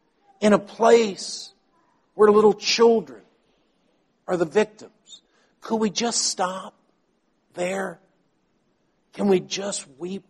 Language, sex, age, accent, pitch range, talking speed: English, male, 60-79, American, 160-230 Hz, 105 wpm